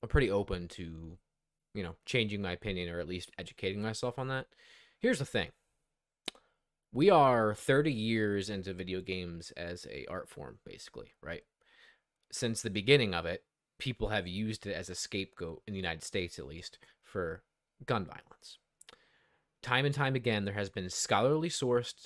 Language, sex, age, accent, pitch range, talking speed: English, male, 20-39, American, 95-130 Hz, 170 wpm